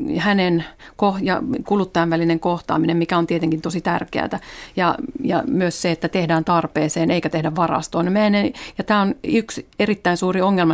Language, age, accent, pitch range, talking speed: Finnish, 40-59, native, 165-190 Hz, 150 wpm